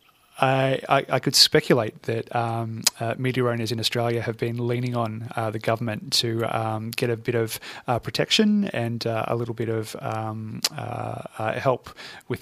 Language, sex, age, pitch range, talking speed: English, male, 20-39, 115-125 Hz, 180 wpm